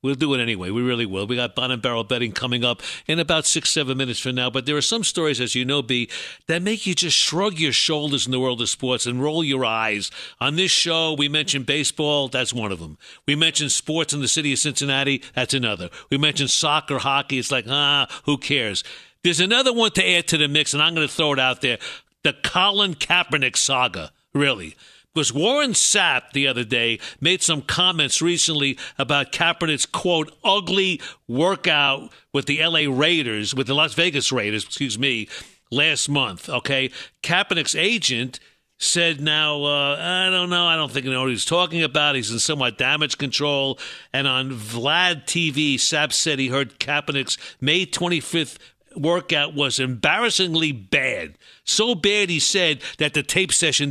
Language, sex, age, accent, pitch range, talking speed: English, male, 60-79, American, 130-165 Hz, 190 wpm